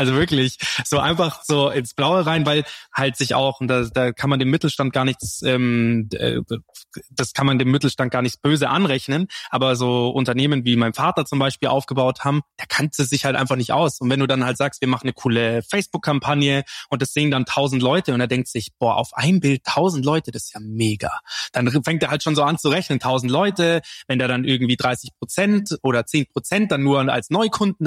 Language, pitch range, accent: German, 125-150 Hz, German